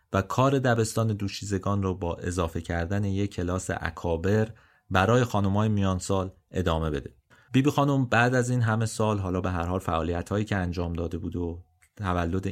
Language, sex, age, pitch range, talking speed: Persian, male, 30-49, 95-115 Hz, 170 wpm